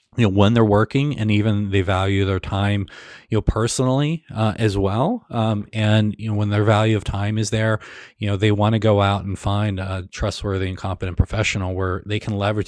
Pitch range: 100-120 Hz